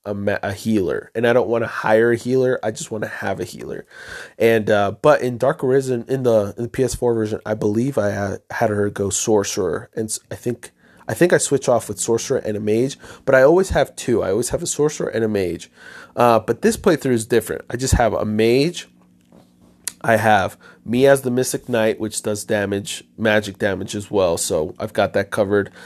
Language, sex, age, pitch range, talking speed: English, male, 20-39, 100-120 Hz, 215 wpm